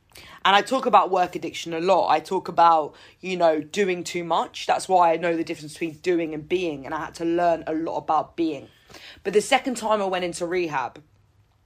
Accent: British